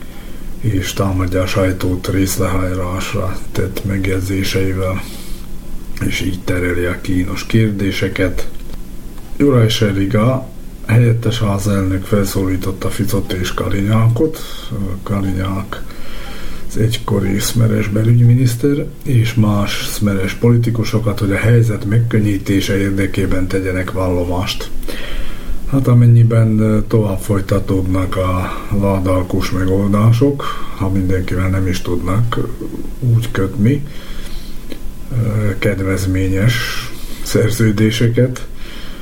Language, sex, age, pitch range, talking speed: Hungarian, male, 50-69, 95-110 Hz, 80 wpm